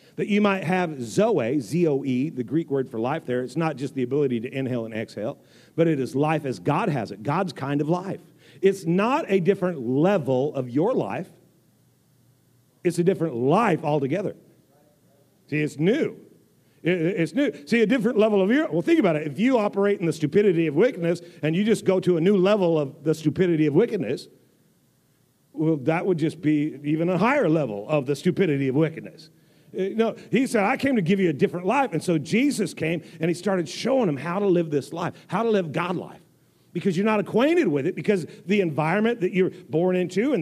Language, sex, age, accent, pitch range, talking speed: English, male, 50-69, American, 150-195 Hz, 205 wpm